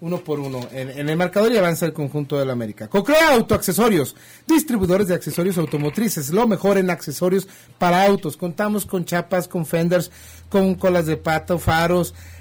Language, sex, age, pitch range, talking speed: Spanish, male, 40-59, 155-205 Hz, 180 wpm